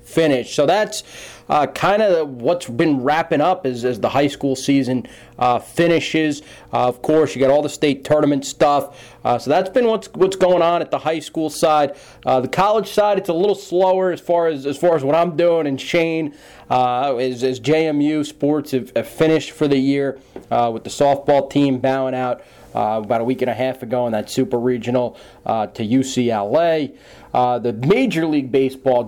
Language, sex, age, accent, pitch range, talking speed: English, male, 30-49, American, 130-160 Hz, 200 wpm